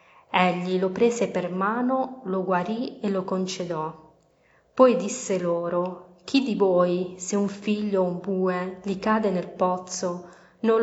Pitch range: 180-210 Hz